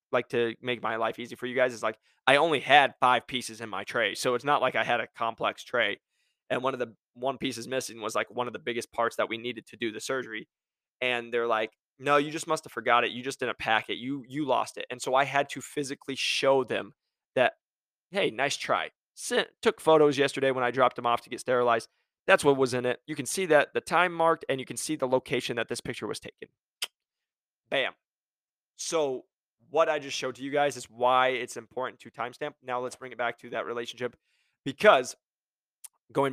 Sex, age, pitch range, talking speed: male, 20-39, 120-145 Hz, 230 wpm